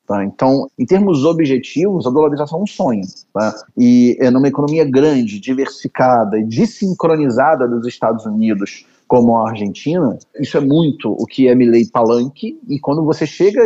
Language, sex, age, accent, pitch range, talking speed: Portuguese, male, 30-49, Brazilian, 125-170 Hz, 160 wpm